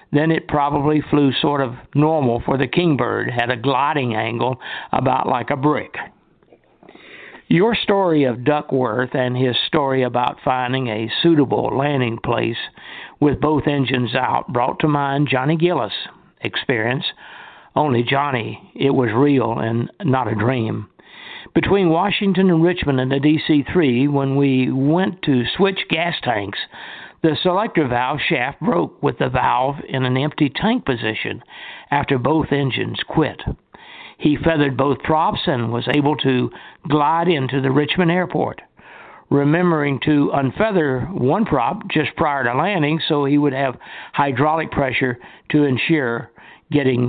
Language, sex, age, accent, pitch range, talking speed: English, male, 60-79, American, 125-155 Hz, 145 wpm